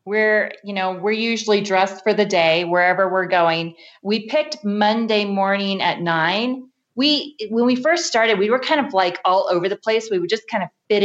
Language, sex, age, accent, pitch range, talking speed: English, female, 30-49, American, 165-205 Hz, 205 wpm